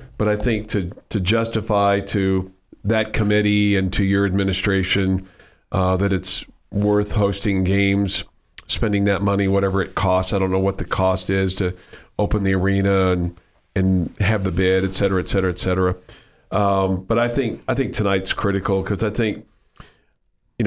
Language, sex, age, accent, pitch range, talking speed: English, male, 50-69, American, 95-115 Hz, 170 wpm